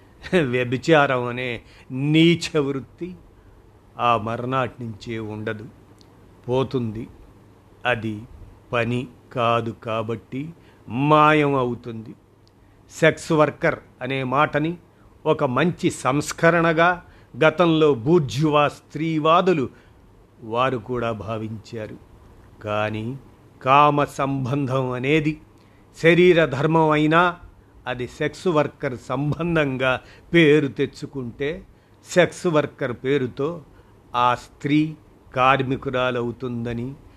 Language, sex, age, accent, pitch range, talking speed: Telugu, male, 50-69, native, 110-145 Hz, 75 wpm